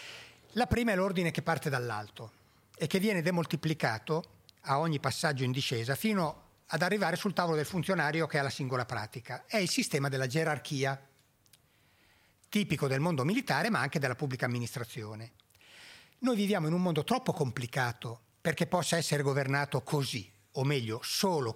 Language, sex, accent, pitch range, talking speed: Italian, male, native, 130-175 Hz, 160 wpm